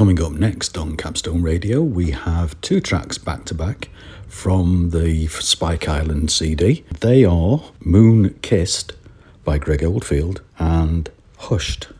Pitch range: 85-100 Hz